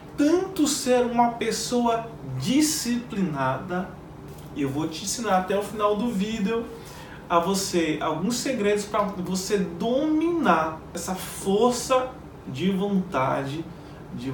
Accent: Brazilian